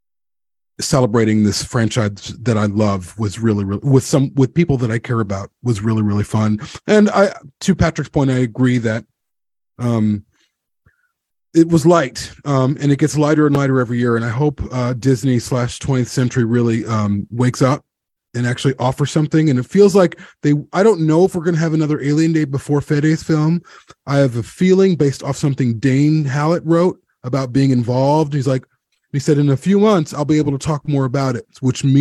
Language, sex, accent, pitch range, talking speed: English, male, American, 115-155 Hz, 200 wpm